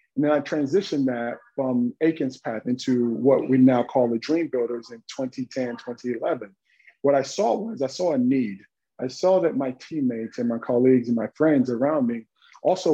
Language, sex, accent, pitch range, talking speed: English, male, American, 125-150 Hz, 190 wpm